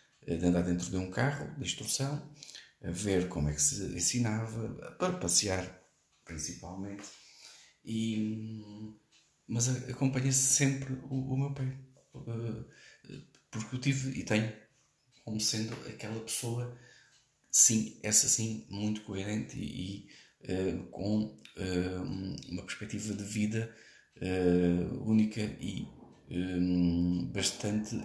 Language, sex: Portuguese, male